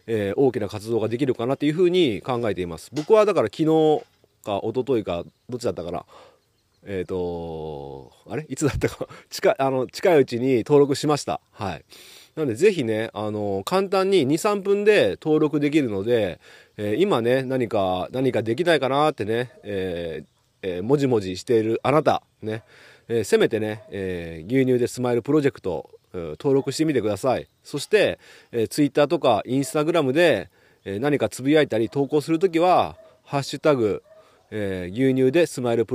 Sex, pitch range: male, 105-155 Hz